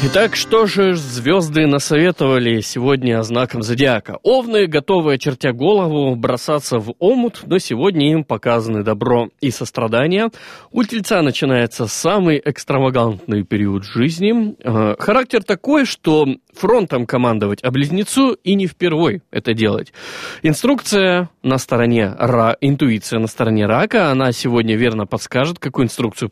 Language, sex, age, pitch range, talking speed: Russian, male, 20-39, 115-180 Hz, 130 wpm